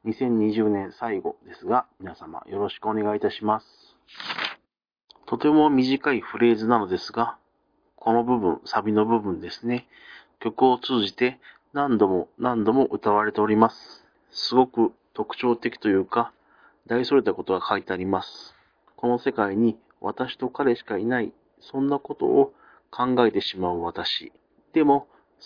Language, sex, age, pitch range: Japanese, male, 40-59, 105-135 Hz